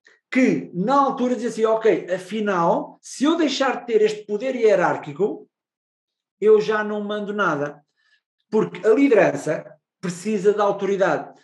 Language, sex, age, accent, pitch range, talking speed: Portuguese, male, 50-69, Portuguese, 185-270 Hz, 135 wpm